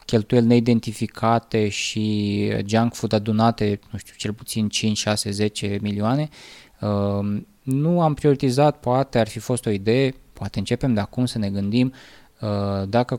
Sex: male